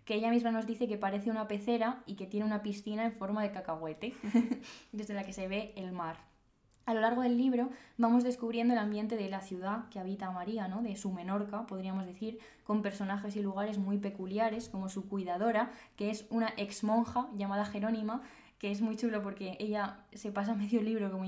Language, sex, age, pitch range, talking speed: Spanish, female, 10-29, 195-225 Hz, 205 wpm